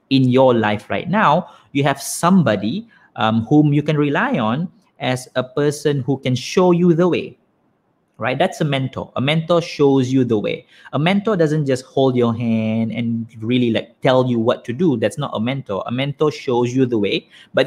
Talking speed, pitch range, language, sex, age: 200 wpm, 115-150 Hz, Malay, male, 20-39